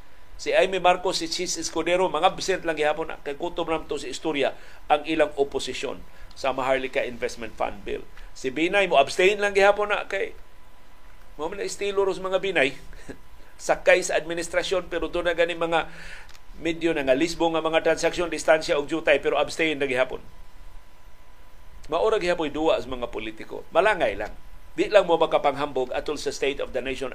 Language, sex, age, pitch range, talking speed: Filipino, male, 50-69, 135-195 Hz, 170 wpm